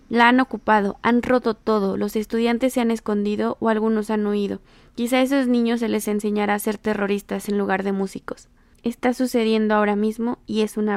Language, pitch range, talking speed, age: Spanish, 205-255 Hz, 195 wpm, 20-39